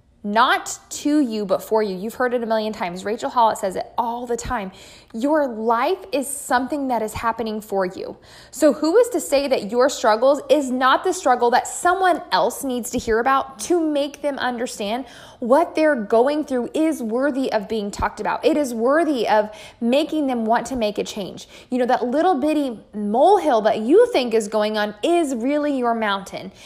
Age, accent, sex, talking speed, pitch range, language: 20-39, American, female, 200 wpm, 220-285 Hz, English